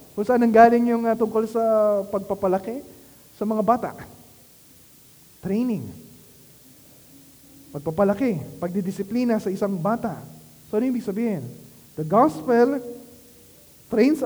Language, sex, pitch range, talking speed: Filipino, male, 210-255 Hz, 95 wpm